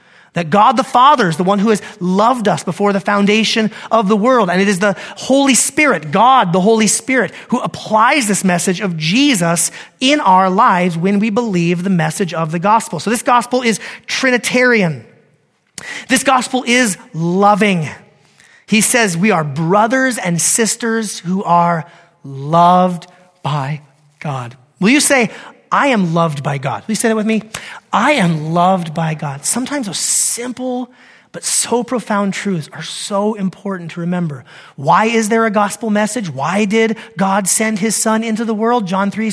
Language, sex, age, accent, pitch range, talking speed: English, male, 30-49, American, 175-235 Hz, 170 wpm